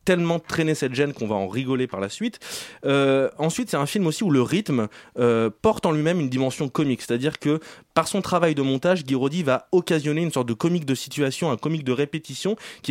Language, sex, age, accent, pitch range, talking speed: French, male, 20-39, French, 125-165 Hz, 230 wpm